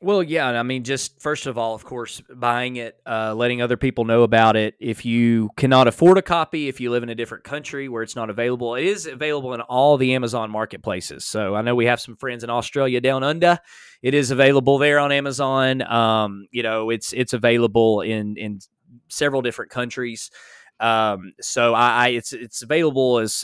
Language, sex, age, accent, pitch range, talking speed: English, male, 20-39, American, 110-135 Hz, 205 wpm